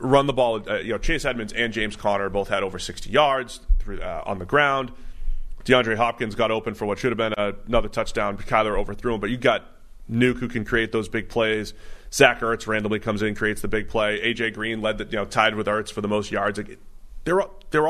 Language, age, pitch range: English, 30-49, 105-125 Hz